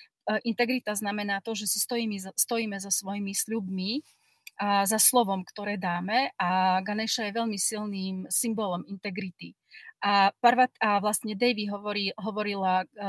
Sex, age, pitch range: female, 40-59, 195-230 Hz